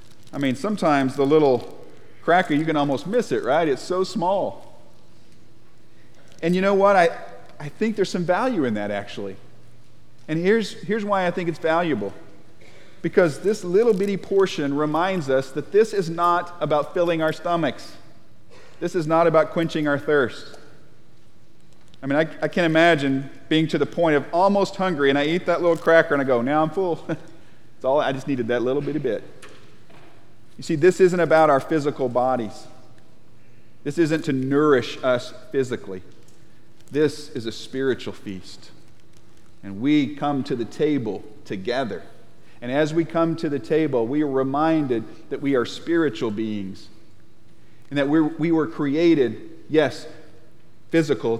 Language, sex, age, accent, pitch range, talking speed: English, male, 40-59, American, 120-165 Hz, 165 wpm